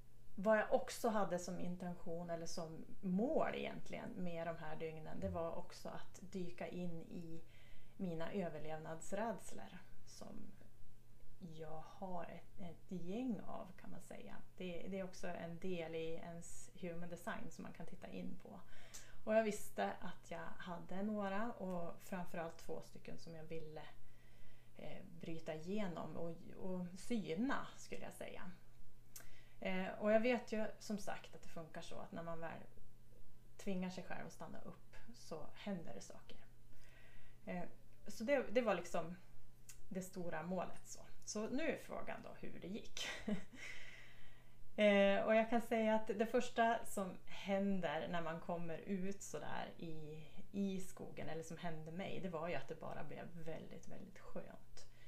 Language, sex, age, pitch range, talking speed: Swedish, female, 30-49, 165-205 Hz, 155 wpm